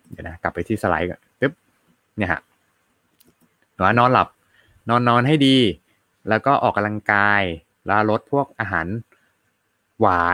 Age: 20-39